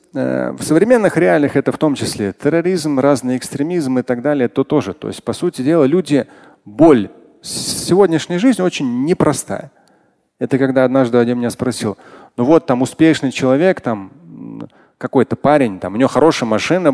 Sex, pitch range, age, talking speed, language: male, 125-175 Hz, 30-49, 165 wpm, Russian